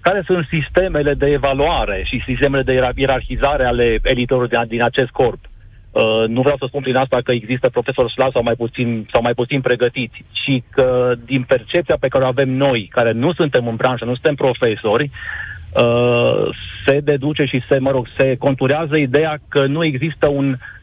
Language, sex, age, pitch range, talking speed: Romanian, male, 40-59, 125-150 Hz, 175 wpm